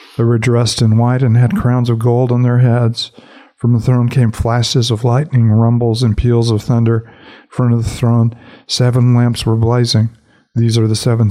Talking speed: 200 wpm